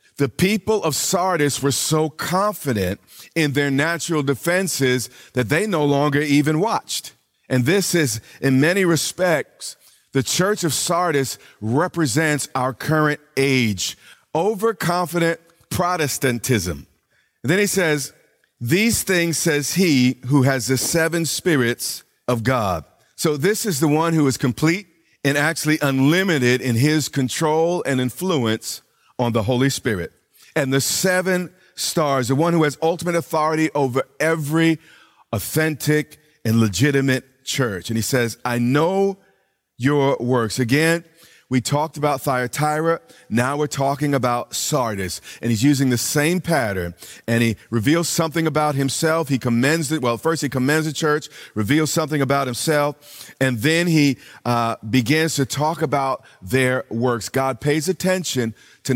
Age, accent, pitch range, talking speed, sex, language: 40-59, American, 125-160 Hz, 140 wpm, male, English